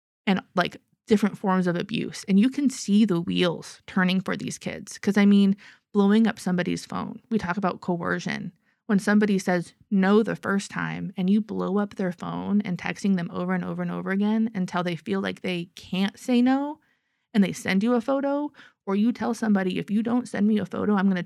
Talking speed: 215 wpm